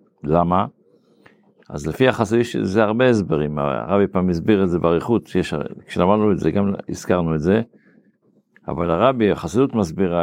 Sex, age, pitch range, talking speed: male, 50-69, 90-115 Hz, 140 wpm